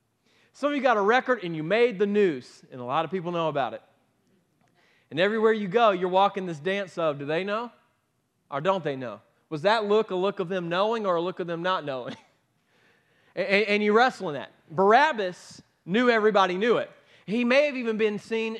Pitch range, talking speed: 180-225 Hz, 215 wpm